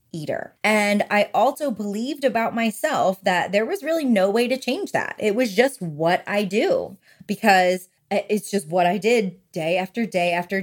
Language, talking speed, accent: English, 180 wpm, American